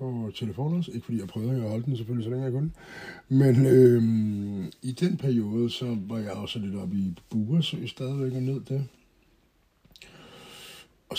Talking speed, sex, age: 175 wpm, male, 60-79